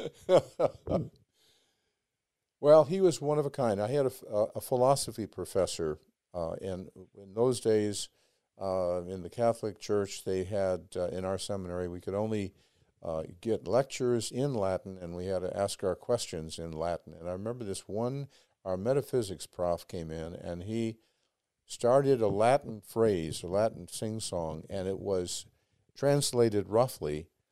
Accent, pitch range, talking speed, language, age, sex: American, 95-140 Hz, 155 wpm, English, 50-69, male